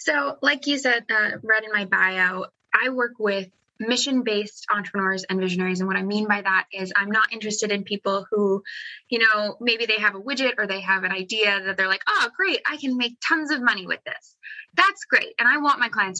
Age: 20-39